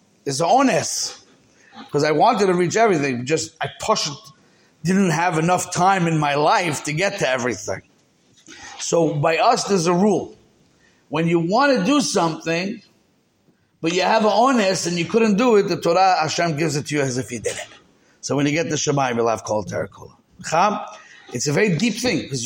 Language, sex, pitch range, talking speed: English, male, 145-190 Hz, 190 wpm